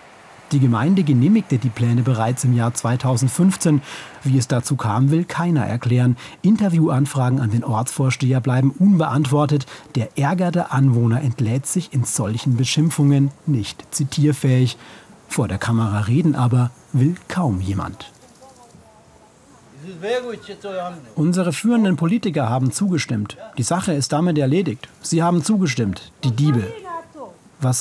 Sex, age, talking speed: male, 40-59, 120 wpm